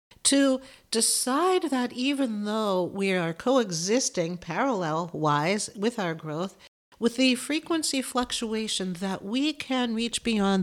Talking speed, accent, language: 125 wpm, American, English